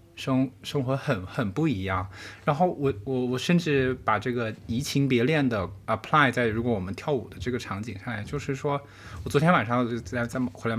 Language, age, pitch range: Chinese, 20-39, 115-165 Hz